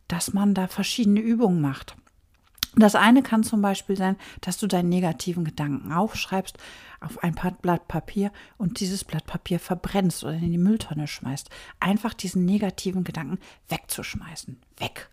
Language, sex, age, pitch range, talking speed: German, female, 50-69, 170-210 Hz, 155 wpm